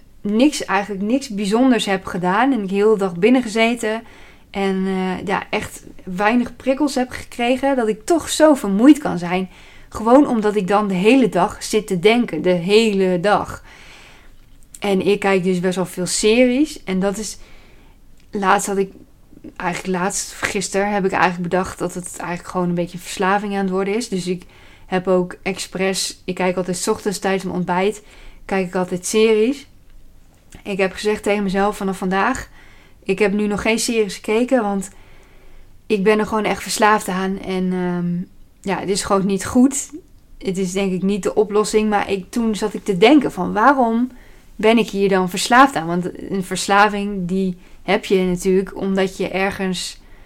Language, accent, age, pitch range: Dutch, Dutch, 20-39, 185-215 Hz